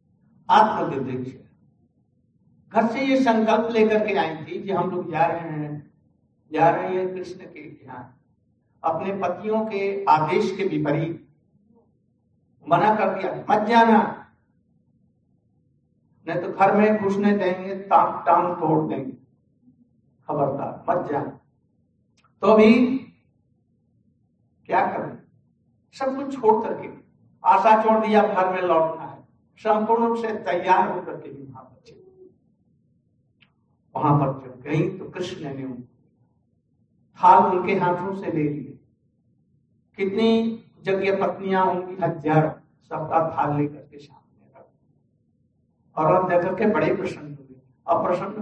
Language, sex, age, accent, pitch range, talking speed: Hindi, male, 60-79, native, 155-210 Hz, 110 wpm